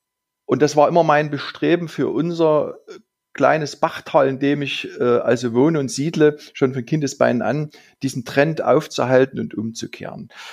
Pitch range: 130-160 Hz